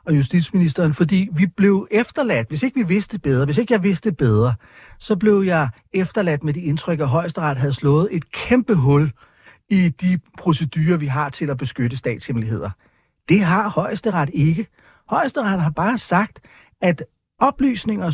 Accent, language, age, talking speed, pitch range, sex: native, Danish, 40-59, 160 wpm, 145-210 Hz, male